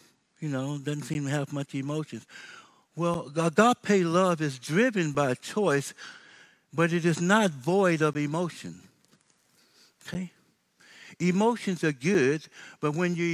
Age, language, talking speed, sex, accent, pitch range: 60-79, English, 130 wpm, male, American, 130-185 Hz